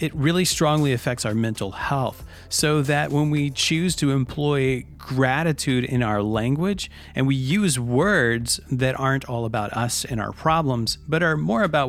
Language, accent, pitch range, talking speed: English, American, 120-160 Hz, 170 wpm